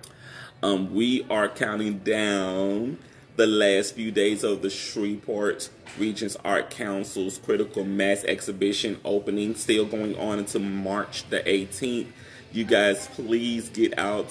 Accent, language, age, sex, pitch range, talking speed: American, English, 30-49, male, 100-115 Hz, 130 wpm